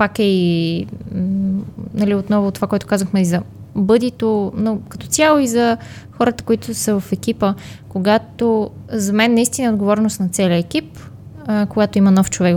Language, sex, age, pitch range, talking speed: Bulgarian, female, 20-39, 180-220 Hz, 160 wpm